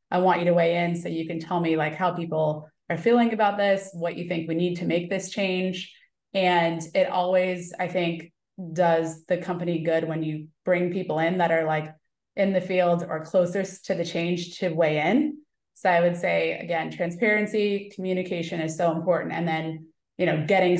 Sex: female